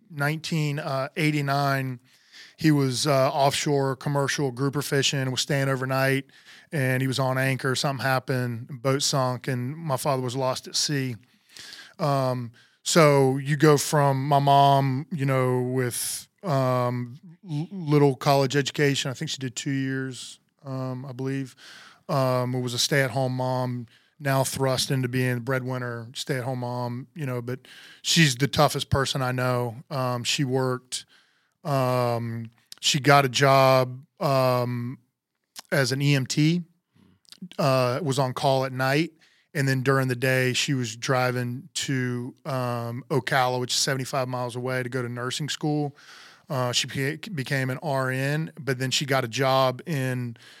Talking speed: 145 wpm